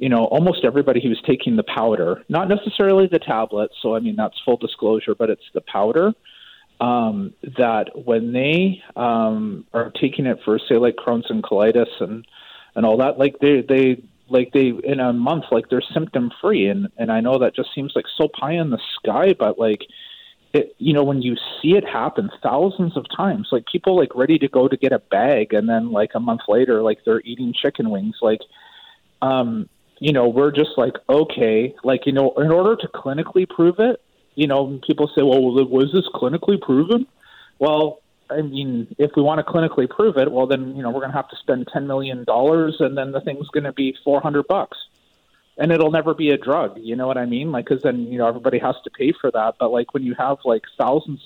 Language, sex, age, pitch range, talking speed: English, male, 40-59, 120-165 Hz, 220 wpm